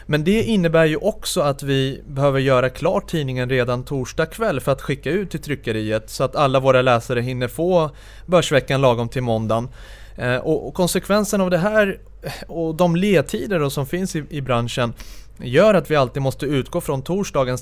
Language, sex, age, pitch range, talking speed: Swedish, male, 30-49, 125-165 Hz, 175 wpm